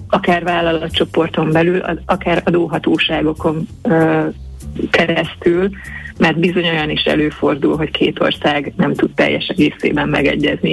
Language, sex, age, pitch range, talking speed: Hungarian, female, 30-49, 150-175 Hz, 115 wpm